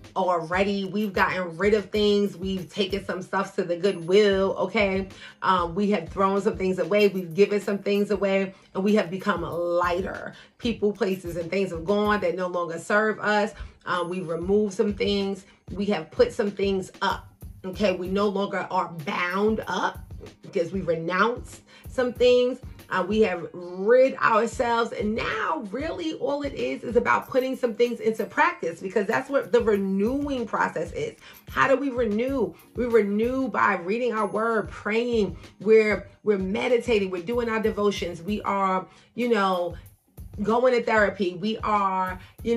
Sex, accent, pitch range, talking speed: female, American, 190-225 Hz, 170 wpm